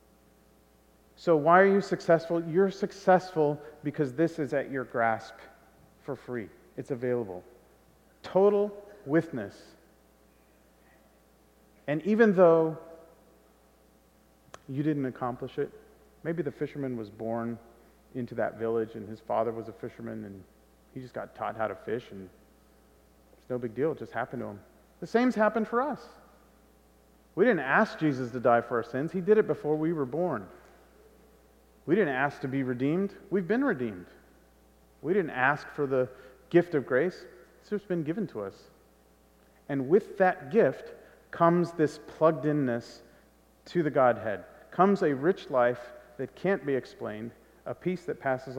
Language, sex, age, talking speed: English, male, 40-59, 155 wpm